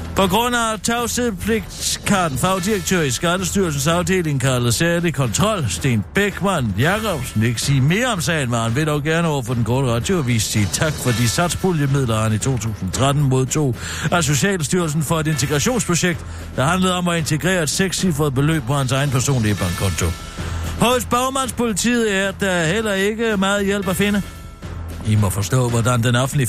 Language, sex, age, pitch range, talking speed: Danish, male, 60-79, 115-185 Hz, 170 wpm